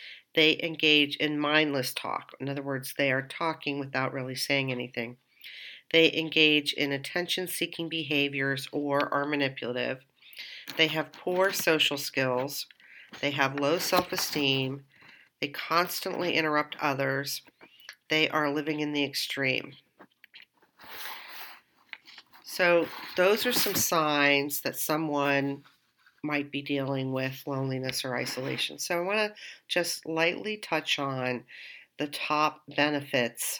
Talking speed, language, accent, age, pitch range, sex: 120 wpm, English, American, 50-69, 135-160 Hz, female